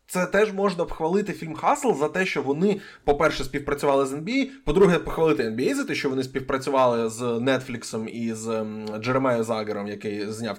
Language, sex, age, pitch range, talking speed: Ukrainian, male, 20-39, 125-170 Hz, 170 wpm